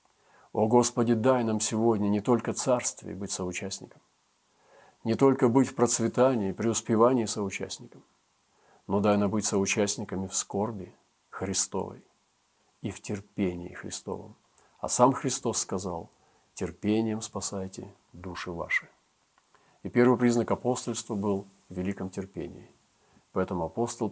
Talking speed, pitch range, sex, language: 115 wpm, 100-120 Hz, male, Russian